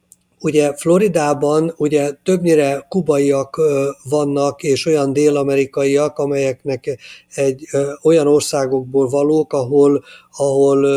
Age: 50-69